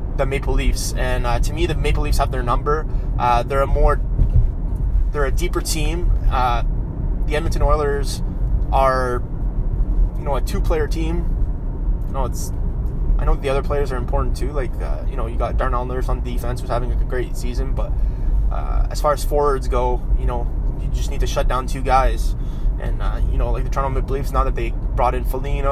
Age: 20-39